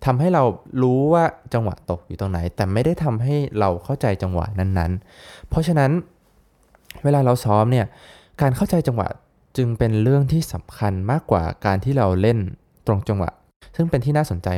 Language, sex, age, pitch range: Thai, male, 20-39, 95-130 Hz